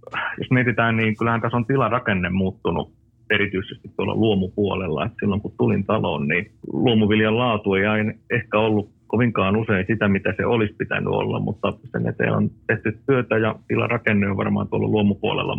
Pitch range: 100-115 Hz